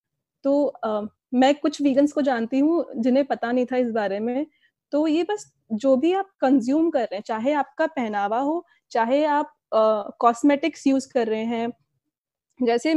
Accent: native